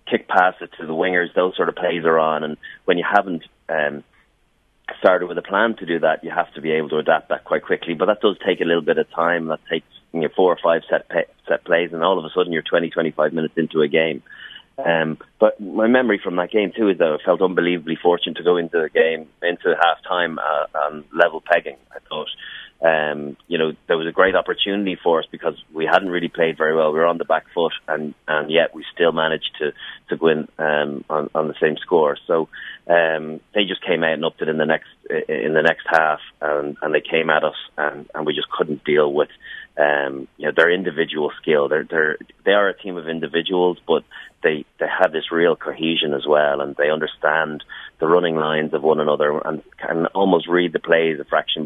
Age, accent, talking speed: 30-49, Irish, 230 wpm